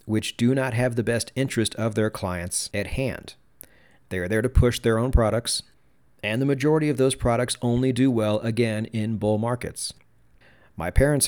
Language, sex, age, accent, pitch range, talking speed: English, male, 40-59, American, 105-125 Hz, 185 wpm